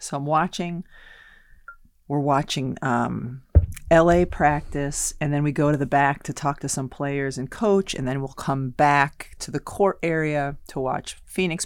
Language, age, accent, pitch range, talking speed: English, 40-59, American, 140-175 Hz, 175 wpm